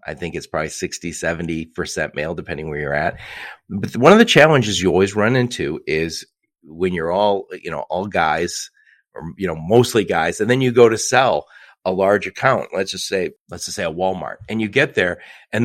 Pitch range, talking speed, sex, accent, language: 95-130 Hz, 205 wpm, male, American, English